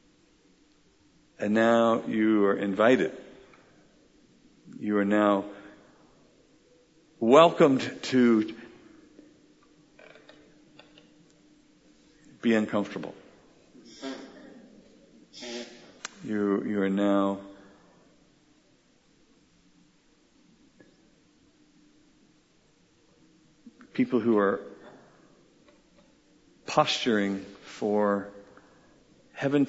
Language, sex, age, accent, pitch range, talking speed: English, male, 50-69, American, 100-130 Hz, 45 wpm